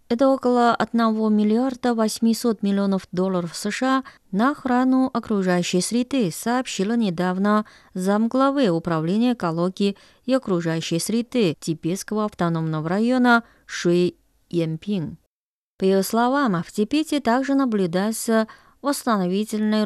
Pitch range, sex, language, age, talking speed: 180-240 Hz, female, Russian, 20-39, 100 wpm